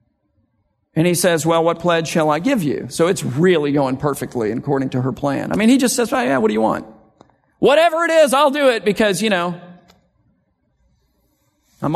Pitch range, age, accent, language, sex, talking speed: 150-215 Hz, 50-69, American, English, male, 195 wpm